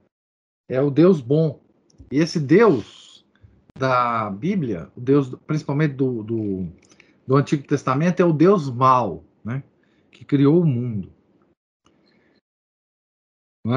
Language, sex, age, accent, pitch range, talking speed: Portuguese, male, 50-69, Brazilian, 120-175 Hz, 120 wpm